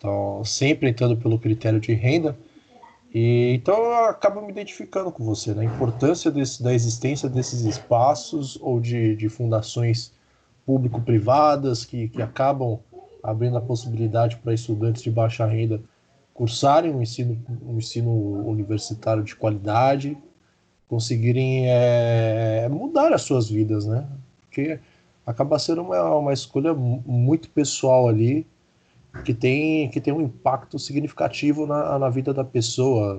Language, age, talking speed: Portuguese, 20-39, 135 wpm